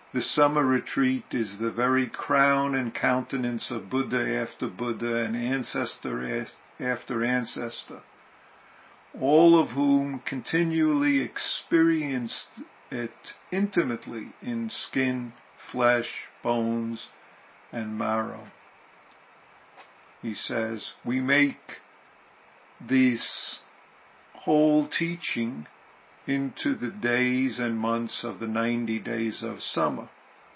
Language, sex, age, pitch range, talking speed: English, male, 50-69, 115-140 Hz, 95 wpm